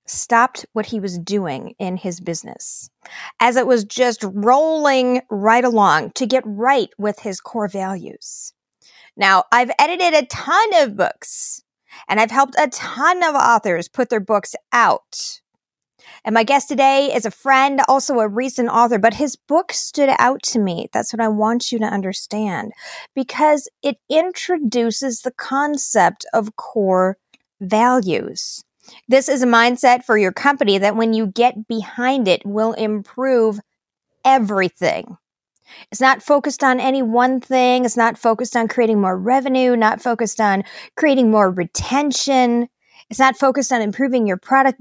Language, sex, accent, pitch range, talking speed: English, female, American, 210-265 Hz, 155 wpm